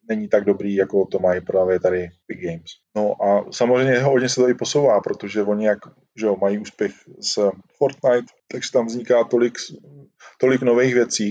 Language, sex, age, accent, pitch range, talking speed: Czech, male, 20-39, native, 100-125 Hz, 180 wpm